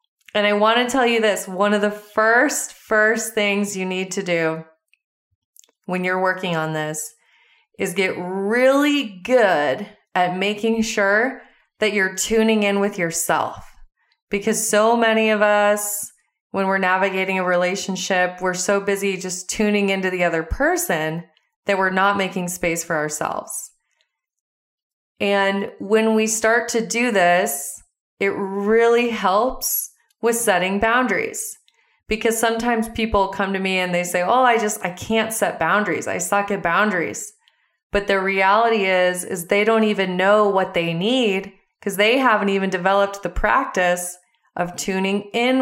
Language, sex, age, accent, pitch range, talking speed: English, female, 20-39, American, 180-220 Hz, 155 wpm